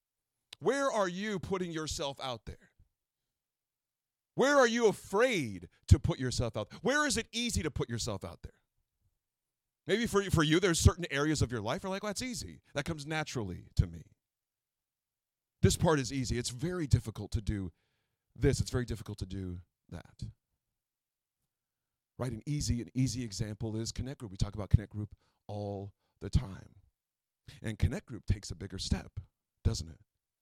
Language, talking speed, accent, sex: English, 170 wpm, American, male